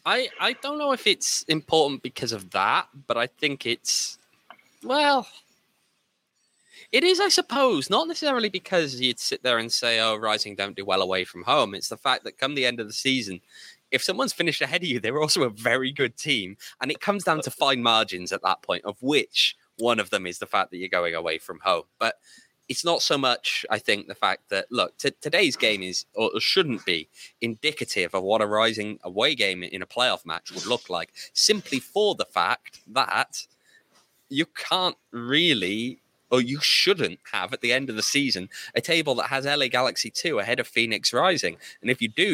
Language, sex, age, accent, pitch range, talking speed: English, male, 20-39, British, 115-185 Hz, 205 wpm